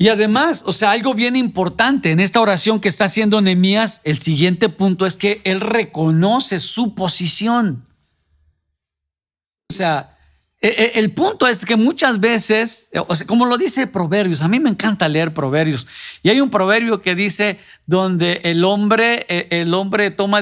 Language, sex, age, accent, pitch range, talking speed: Spanish, male, 50-69, Mexican, 170-230 Hz, 160 wpm